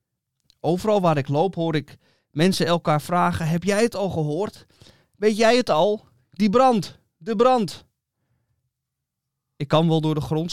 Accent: Dutch